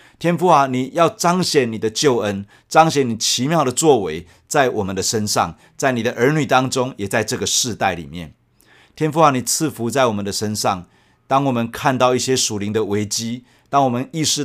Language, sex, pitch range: Chinese, male, 110-140 Hz